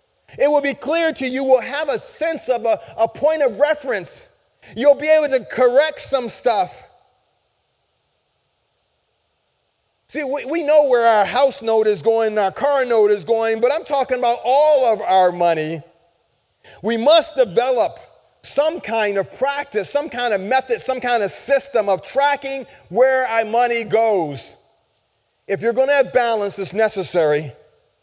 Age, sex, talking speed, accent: 30-49, male, 165 wpm, American